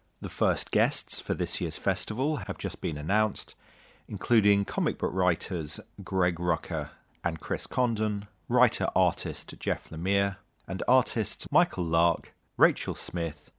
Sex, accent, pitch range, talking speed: male, British, 85-105 Hz, 130 wpm